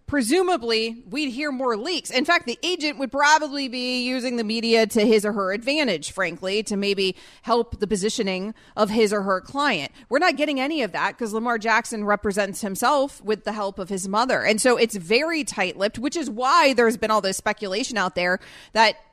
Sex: female